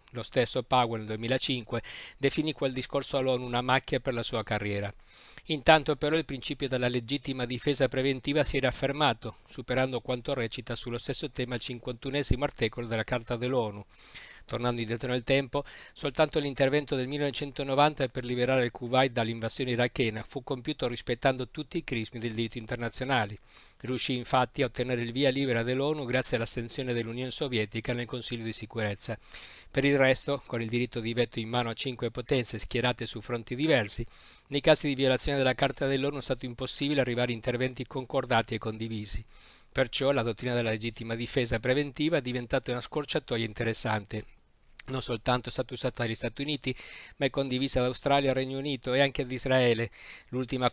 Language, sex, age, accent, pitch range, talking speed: Italian, male, 50-69, native, 115-135 Hz, 170 wpm